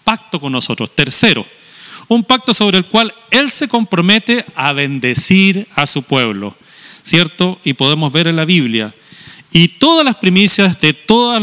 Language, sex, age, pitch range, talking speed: Spanish, male, 40-59, 145-215 Hz, 160 wpm